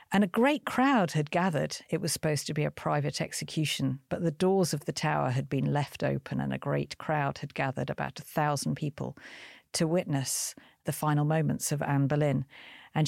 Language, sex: English, female